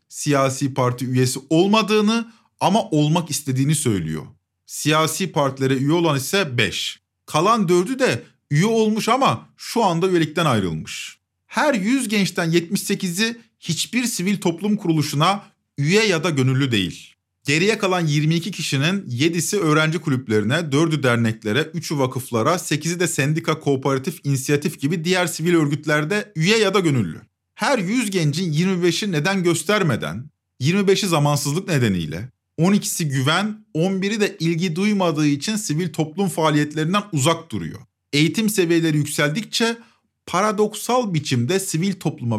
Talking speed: 125 wpm